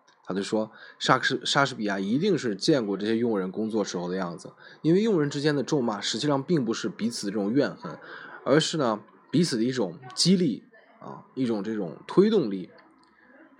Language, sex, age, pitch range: Chinese, male, 20-39, 105-150 Hz